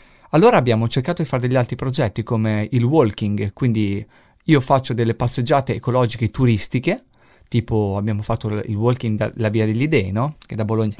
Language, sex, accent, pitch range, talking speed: Italian, male, native, 110-140 Hz, 170 wpm